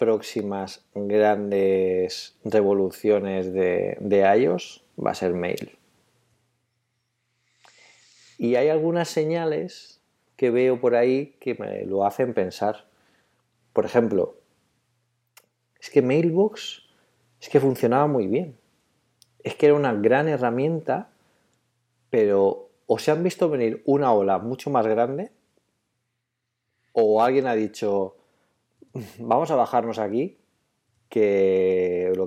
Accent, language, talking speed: Spanish, Spanish, 110 wpm